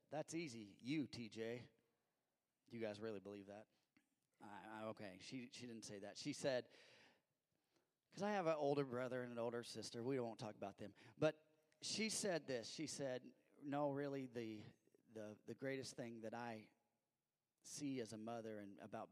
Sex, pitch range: male, 110-140 Hz